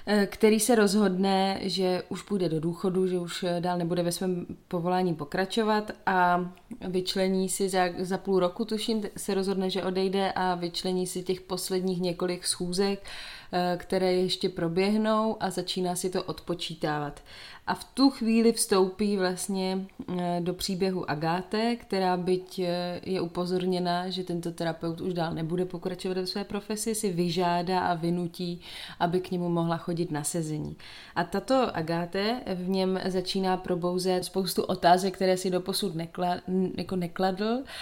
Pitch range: 175-195 Hz